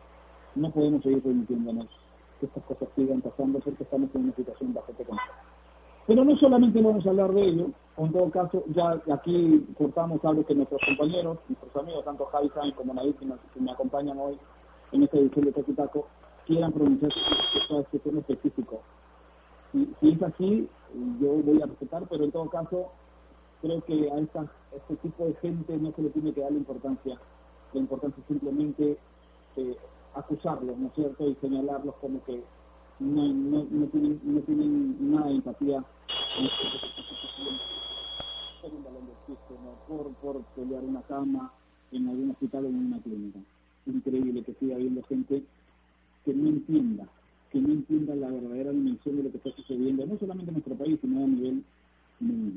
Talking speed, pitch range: 170 wpm, 130-200 Hz